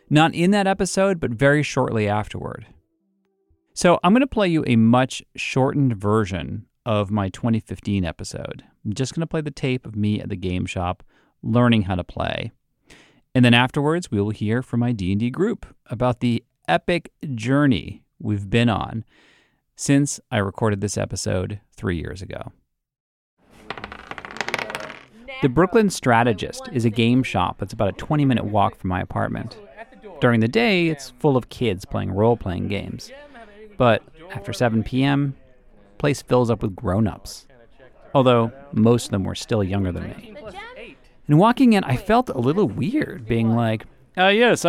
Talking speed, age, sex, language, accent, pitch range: 160 wpm, 40-59, male, English, American, 110-155 Hz